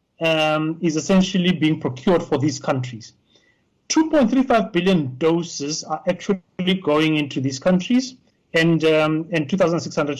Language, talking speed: English, 125 wpm